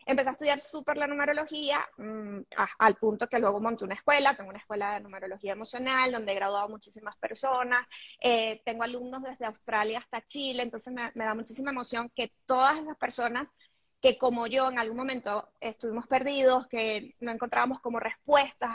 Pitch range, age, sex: 220-275 Hz, 20-39, female